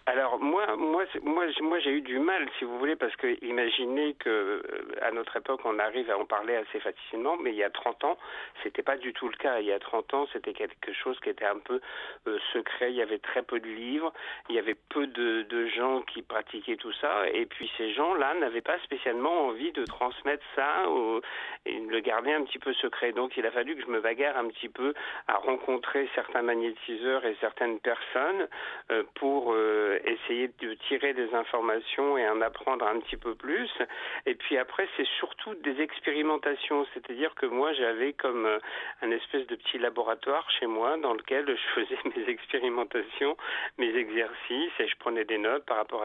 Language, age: French, 50-69